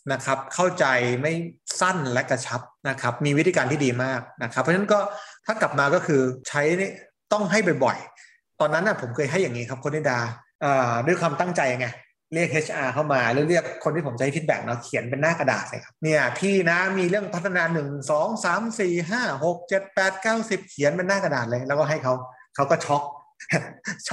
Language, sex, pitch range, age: Thai, male, 130-175 Hz, 20-39